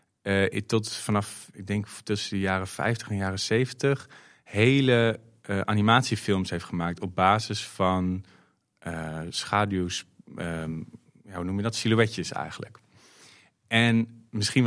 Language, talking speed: Dutch, 130 wpm